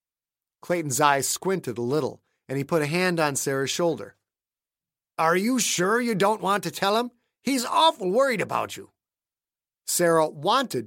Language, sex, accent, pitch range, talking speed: English, male, American, 135-195 Hz, 160 wpm